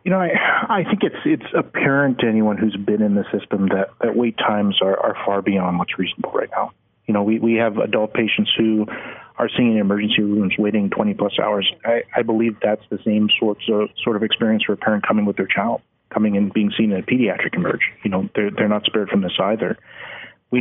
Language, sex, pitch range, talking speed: English, male, 105-115 Hz, 235 wpm